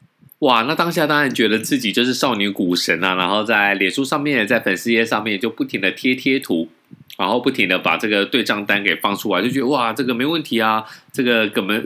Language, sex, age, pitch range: Chinese, male, 20-39, 105-150 Hz